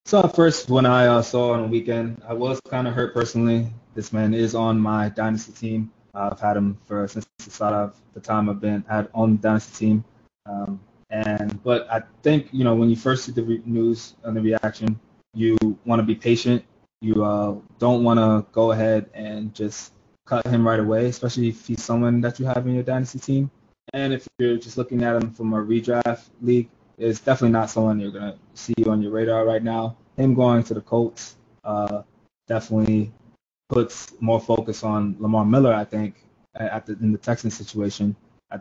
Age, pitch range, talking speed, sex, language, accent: 20-39, 105-115 Hz, 210 wpm, male, English, American